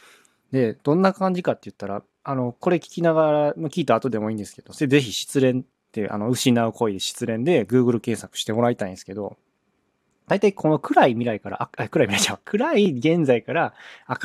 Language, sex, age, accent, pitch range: Japanese, male, 20-39, native, 105-150 Hz